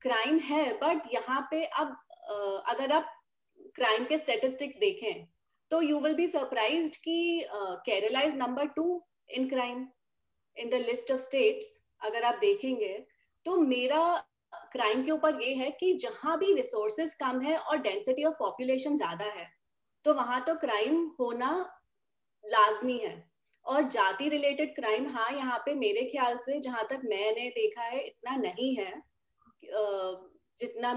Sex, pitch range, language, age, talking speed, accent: female, 235-315 Hz, Hindi, 30-49, 150 wpm, native